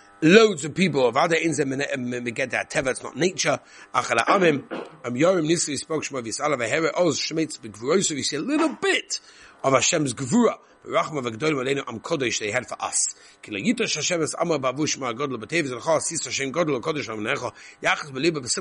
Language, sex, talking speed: English, male, 115 wpm